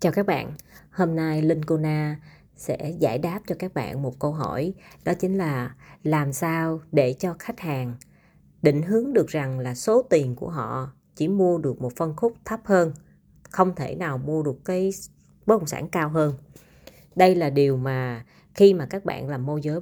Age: 20-39